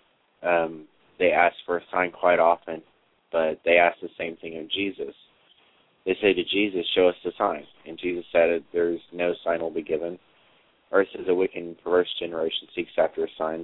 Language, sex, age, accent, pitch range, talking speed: English, male, 30-49, American, 80-95 Hz, 190 wpm